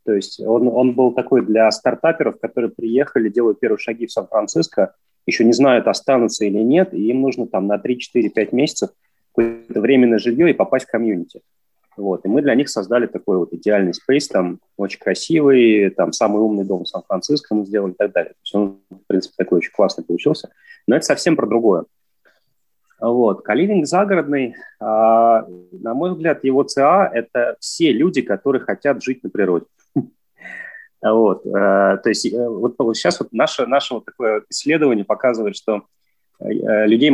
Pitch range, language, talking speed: 105-135 Hz, English, 160 wpm